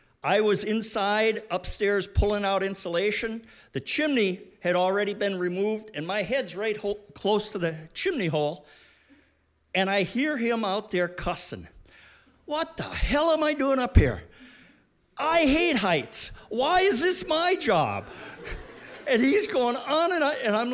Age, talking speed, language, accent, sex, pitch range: 50-69, 155 wpm, English, American, male, 185-270 Hz